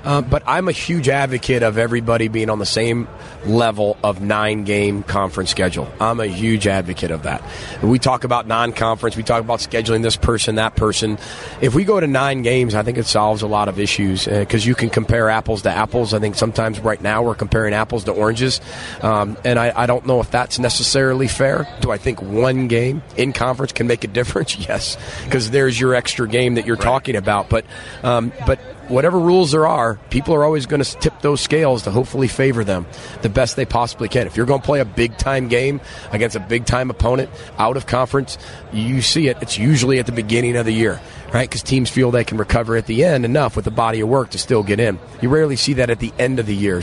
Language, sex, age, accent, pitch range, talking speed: English, male, 30-49, American, 110-130 Hz, 230 wpm